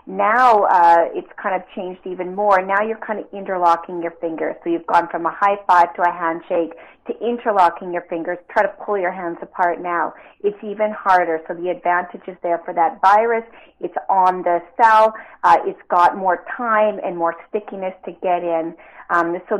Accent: American